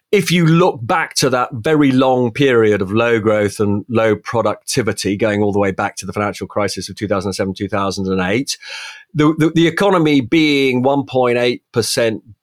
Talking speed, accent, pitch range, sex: 160 wpm, British, 110-145 Hz, male